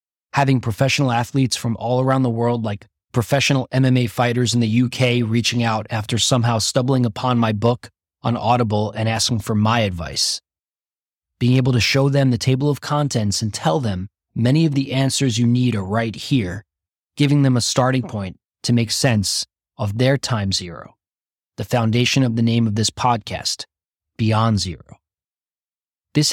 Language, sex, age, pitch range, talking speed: English, male, 20-39, 110-130 Hz, 170 wpm